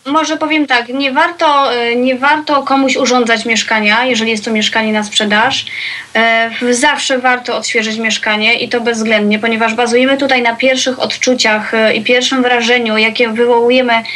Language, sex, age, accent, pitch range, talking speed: Polish, female, 20-39, native, 220-260 Hz, 140 wpm